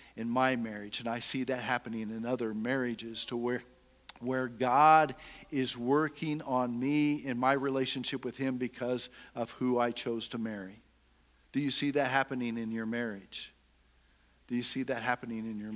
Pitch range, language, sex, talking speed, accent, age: 115-135 Hz, English, male, 175 wpm, American, 50-69